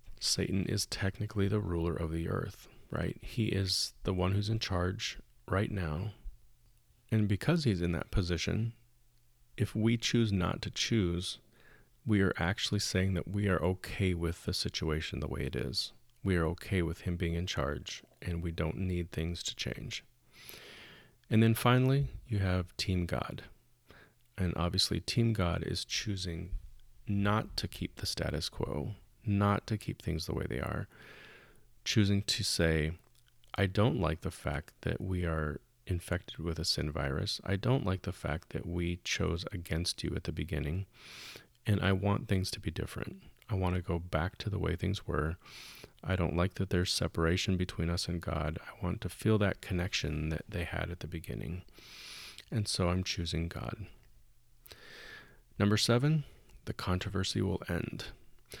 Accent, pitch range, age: American, 85-105 Hz, 30-49